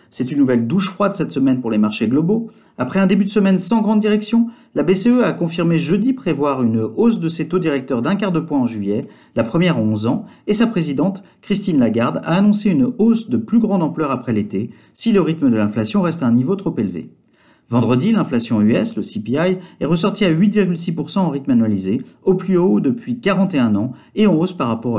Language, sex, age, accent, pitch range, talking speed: French, male, 50-69, French, 125-195 Hz, 220 wpm